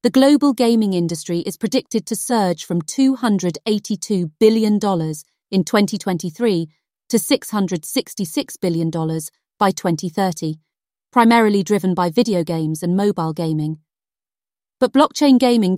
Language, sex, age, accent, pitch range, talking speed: English, female, 30-49, British, 175-235 Hz, 110 wpm